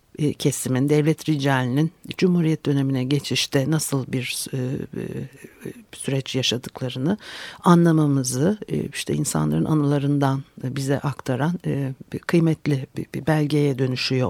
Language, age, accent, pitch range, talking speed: Turkish, 60-79, native, 135-170 Hz, 85 wpm